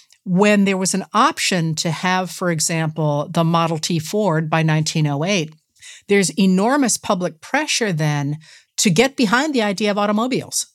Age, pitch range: 50-69, 170-215 Hz